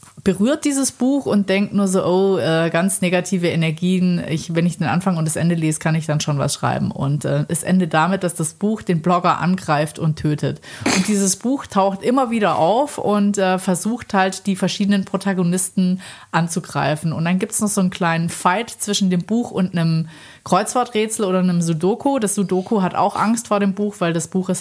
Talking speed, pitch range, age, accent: 200 wpm, 165-205 Hz, 30-49, German